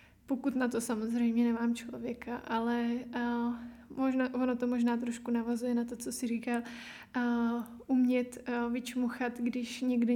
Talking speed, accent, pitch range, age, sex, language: 150 wpm, native, 240-250 Hz, 20-39, female, Czech